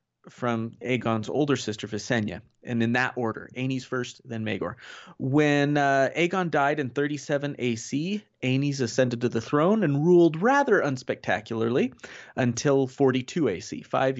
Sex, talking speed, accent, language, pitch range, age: male, 140 wpm, American, English, 125-170 Hz, 30-49